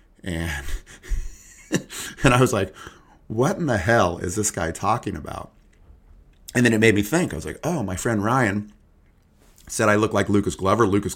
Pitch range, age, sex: 85-110 Hz, 30-49, male